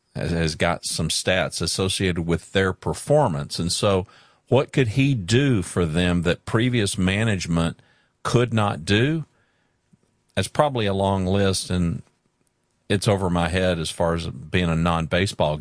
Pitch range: 90-110 Hz